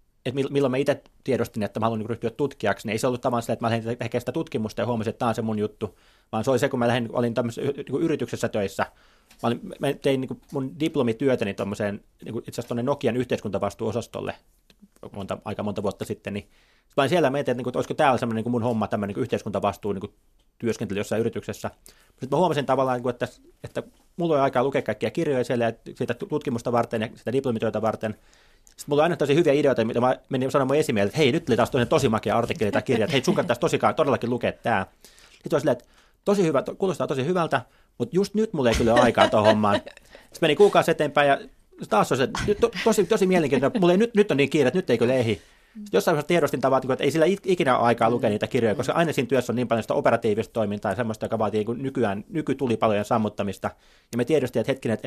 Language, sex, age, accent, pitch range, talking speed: Finnish, male, 30-49, native, 110-140 Hz, 210 wpm